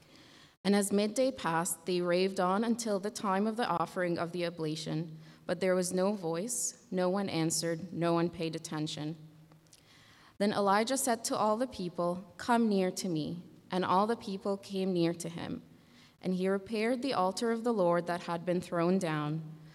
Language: English